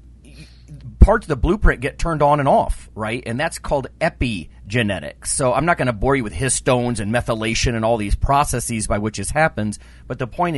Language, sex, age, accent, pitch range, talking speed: English, male, 40-59, American, 100-135 Hz, 205 wpm